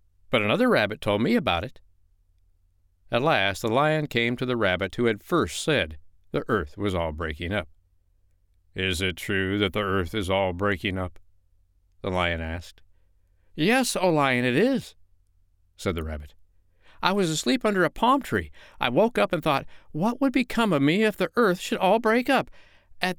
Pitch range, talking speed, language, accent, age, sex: 90-120 Hz, 185 wpm, English, American, 60-79, male